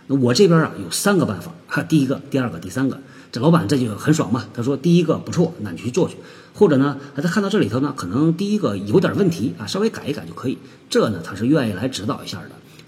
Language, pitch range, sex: Chinese, 120-160 Hz, male